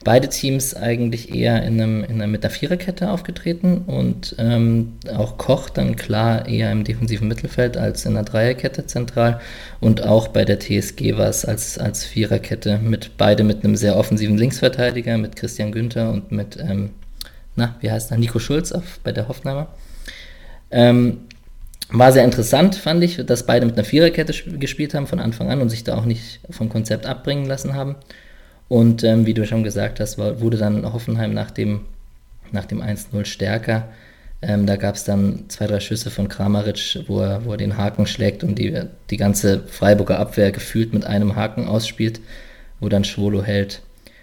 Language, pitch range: German, 105-130 Hz